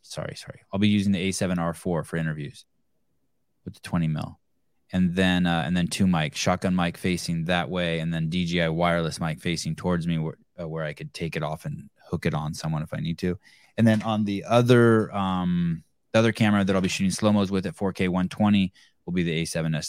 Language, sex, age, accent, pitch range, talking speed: English, male, 20-39, American, 85-110 Hz, 215 wpm